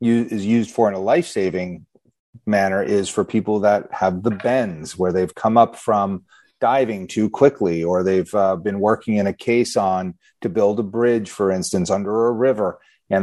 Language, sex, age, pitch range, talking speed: English, male, 30-49, 95-115 Hz, 185 wpm